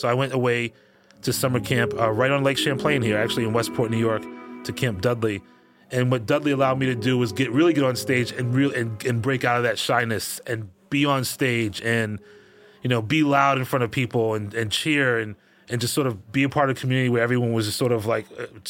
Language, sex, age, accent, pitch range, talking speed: English, male, 30-49, American, 115-135 Hz, 250 wpm